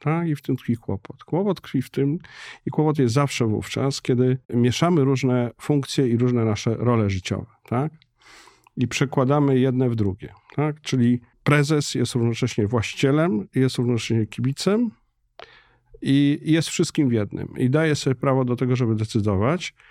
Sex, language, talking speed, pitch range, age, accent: male, Polish, 155 wpm, 115-145 Hz, 50-69, native